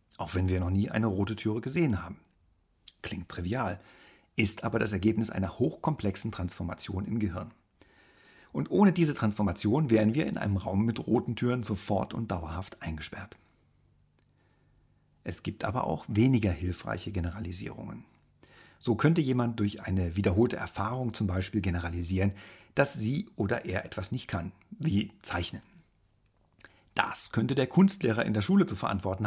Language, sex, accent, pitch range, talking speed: German, male, German, 95-115 Hz, 150 wpm